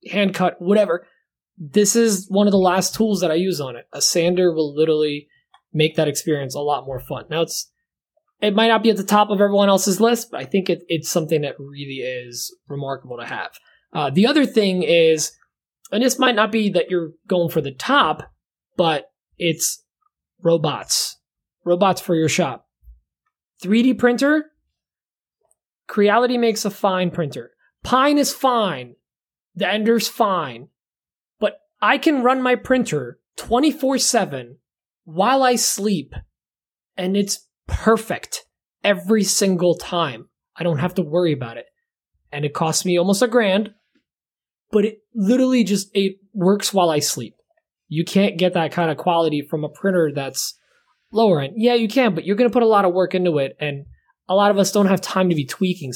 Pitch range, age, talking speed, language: 160-220 Hz, 20-39, 175 wpm, English